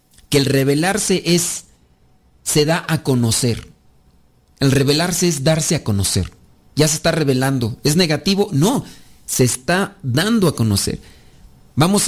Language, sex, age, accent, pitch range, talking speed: Spanish, male, 40-59, Mexican, 130-165 Hz, 135 wpm